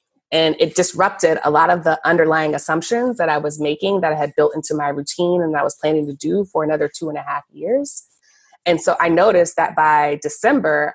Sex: female